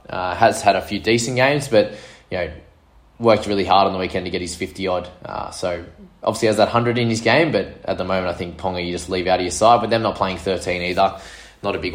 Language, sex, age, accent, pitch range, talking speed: English, male, 20-39, Australian, 95-120 Hz, 265 wpm